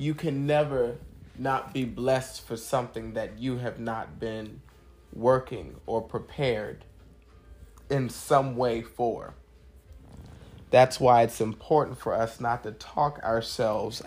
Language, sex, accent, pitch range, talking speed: English, male, American, 85-135 Hz, 130 wpm